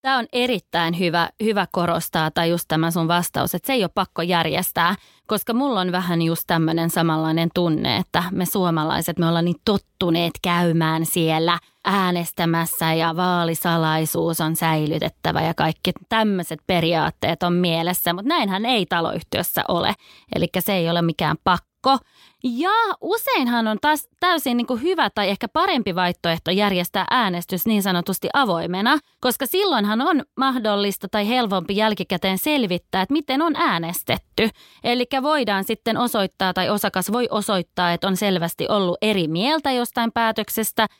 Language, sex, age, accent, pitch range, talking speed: Finnish, female, 20-39, native, 170-230 Hz, 150 wpm